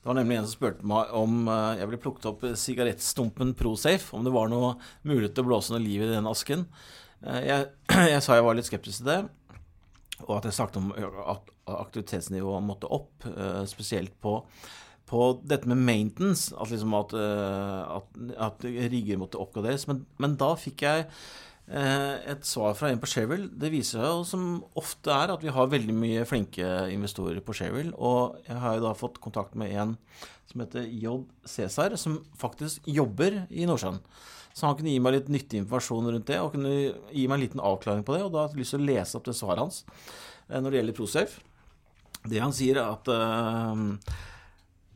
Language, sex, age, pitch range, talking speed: English, male, 30-49, 105-140 Hz, 185 wpm